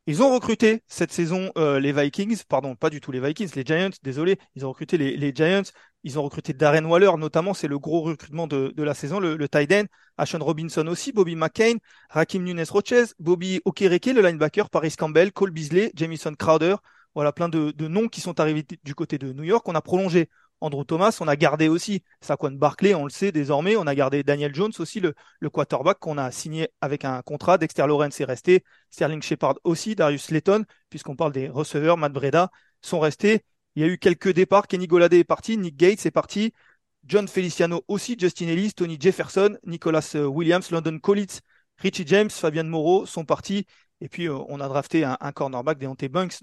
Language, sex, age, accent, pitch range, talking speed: French, male, 30-49, French, 155-190 Hz, 205 wpm